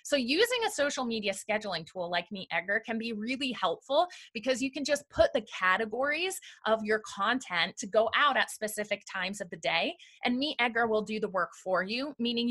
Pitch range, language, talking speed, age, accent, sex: 200-280 Hz, English, 205 wpm, 30-49, American, female